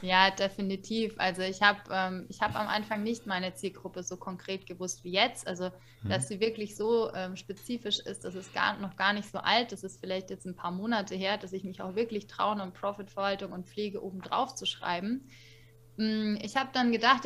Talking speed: 200 wpm